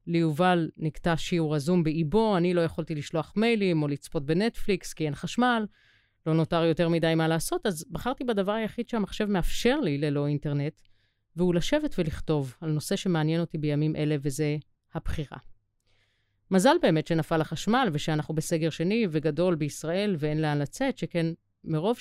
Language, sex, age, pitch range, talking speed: Hebrew, female, 30-49, 150-185 Hz, 155 wpm